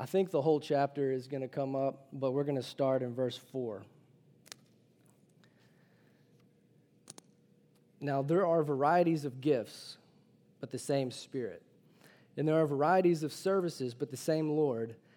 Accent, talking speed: American, 150 wpm